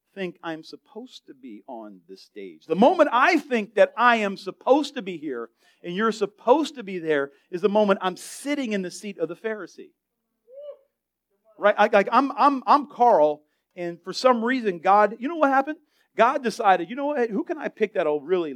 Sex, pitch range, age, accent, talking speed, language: male, 165-250 Hz, 40-59, American, 200 wpm, English